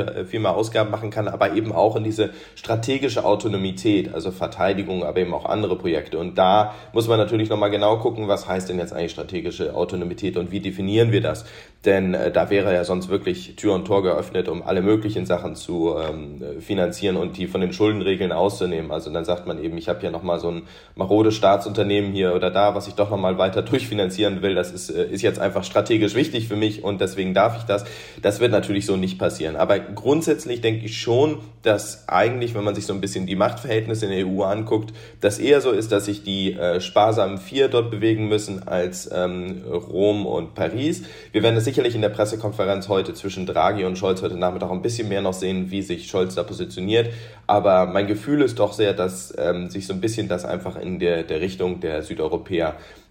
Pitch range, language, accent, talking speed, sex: 95-110 Hz, German, German, 210 wpm, male